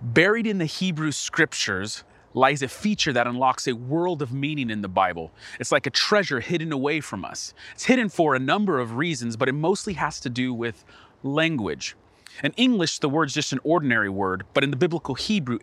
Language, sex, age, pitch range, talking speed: English, male, 30-49, 120-180 Hz, 205 wpm